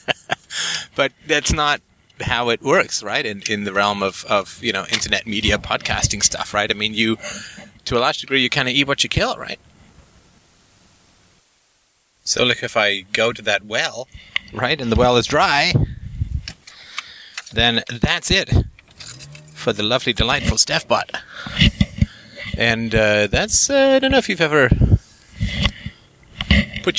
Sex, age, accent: male, 30-49, American